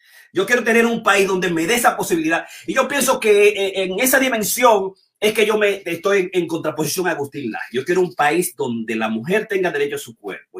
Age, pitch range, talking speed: 30-49, 145-220 Hz, 230 wpm